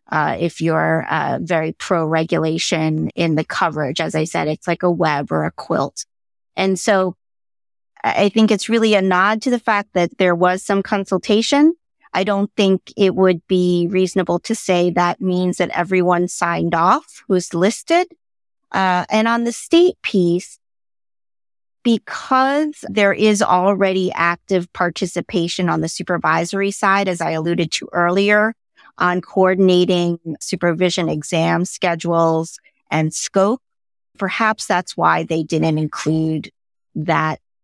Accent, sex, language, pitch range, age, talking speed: American, female, English, 165-205 Hz, 30-49, 140 wpm